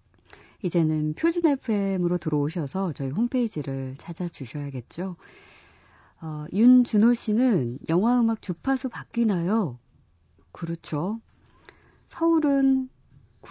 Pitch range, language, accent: 145-230 Hz, Korean, native